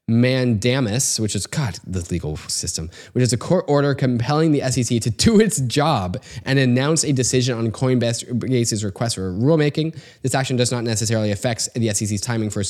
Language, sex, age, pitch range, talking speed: English, male, 10-29, 105-125 Hz, 180 wpm